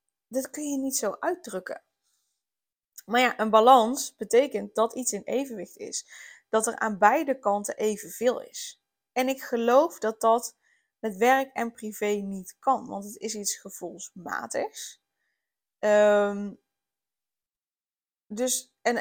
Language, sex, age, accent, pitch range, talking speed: Dutch, female, 20-39, Dutch, 205-255 Hz, 125 wpm